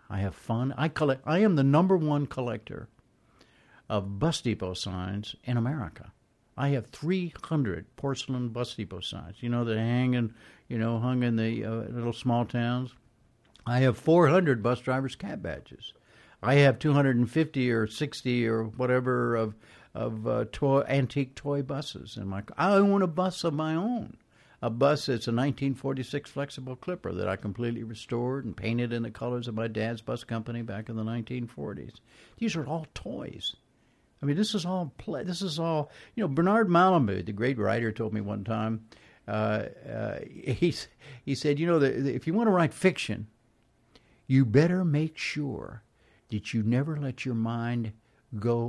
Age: 60-79